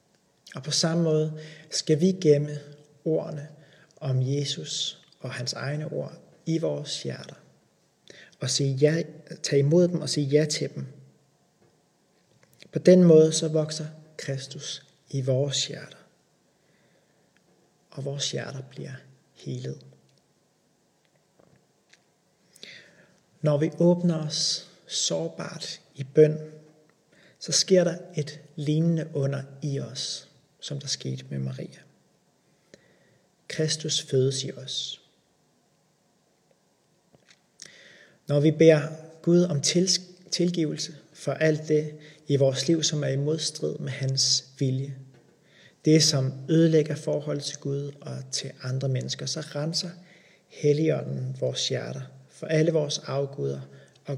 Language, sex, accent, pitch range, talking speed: Danish, male, native, 135-160 Hz, 115 wpm